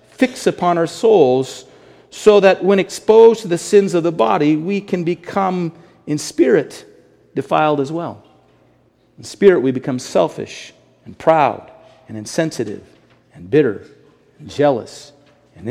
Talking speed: 140 wpm